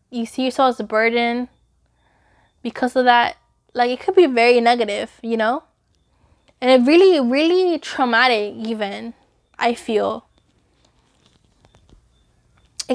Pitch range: 235-265 Hz